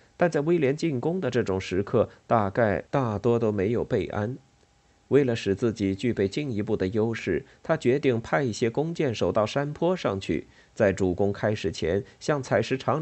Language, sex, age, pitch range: Chinese, male, 50-69, 95-130 Hz